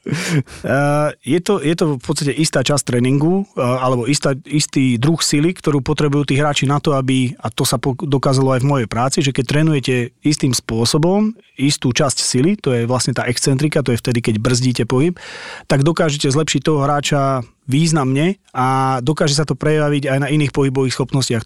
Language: Slovak